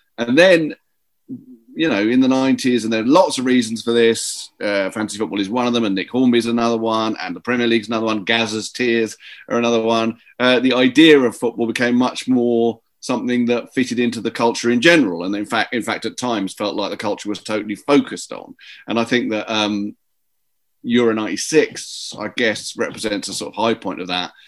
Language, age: English, 40-59